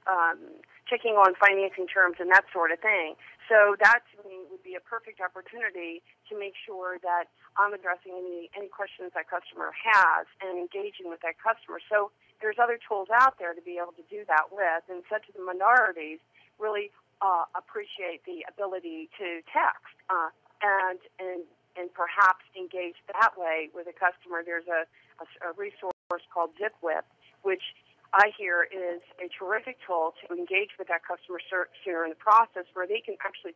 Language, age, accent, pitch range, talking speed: English, 40-59, American, 175-210 Hz, 180 wpm